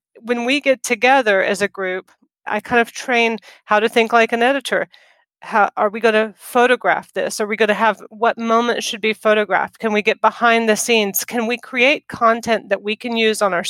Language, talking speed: English, 220 wpm